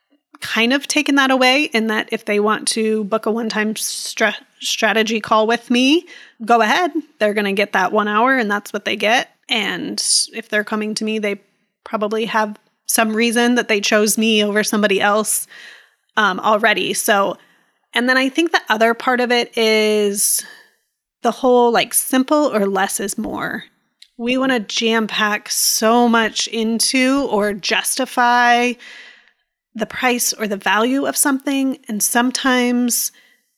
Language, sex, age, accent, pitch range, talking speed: English, female, 20-39, American, 210-245 Hz, 165 wpm